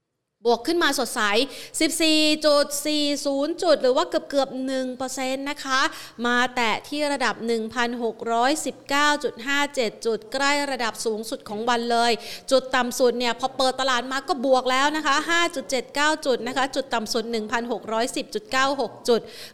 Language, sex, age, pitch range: Thai, female, 30-49, 230-275 Hz